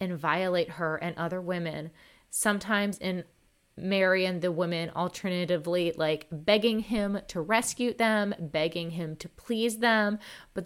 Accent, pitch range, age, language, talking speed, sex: American, 160-195 Hz, 20-39, English, 140 wpm, female